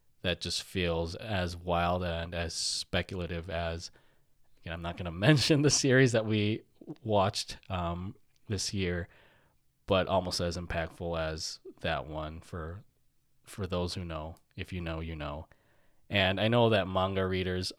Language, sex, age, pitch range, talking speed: English, male, 20-39, 85-105 Hz, 150 wpm